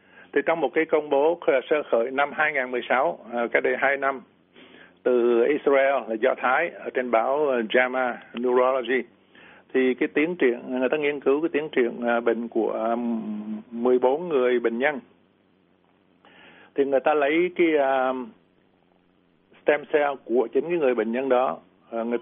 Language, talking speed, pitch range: Vietnamese, 150 wpm, 115-140 Hz